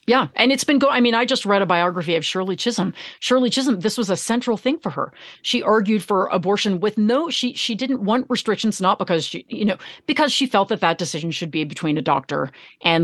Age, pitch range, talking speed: 40-59, 175-230 Hz, 240 wpm